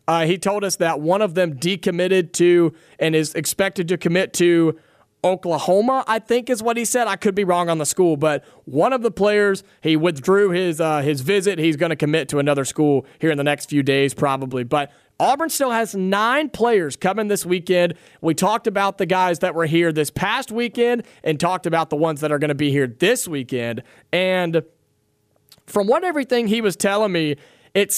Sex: male